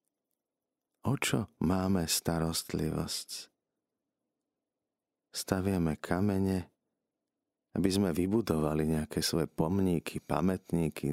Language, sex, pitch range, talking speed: Slovak, male, 80-95 Hz, 70 wpm